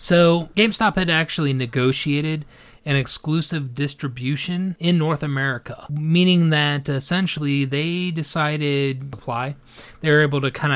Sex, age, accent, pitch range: male, 30-49, American, 130-155 Hz